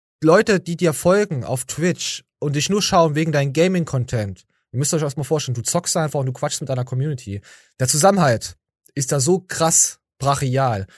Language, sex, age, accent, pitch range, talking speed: German, male, 20-39, German, 125-170 Hz, 185 wpm